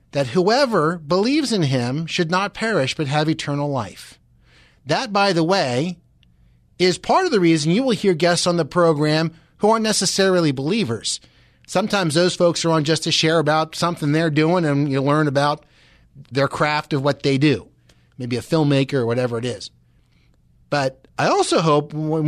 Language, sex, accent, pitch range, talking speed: English, male, American, 140-200 Hz, 180 wpm